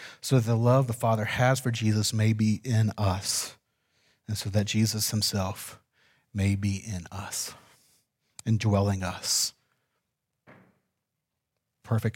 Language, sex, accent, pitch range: English, male, American, 105-135 Hz